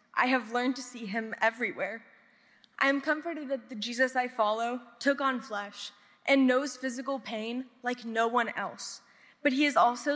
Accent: American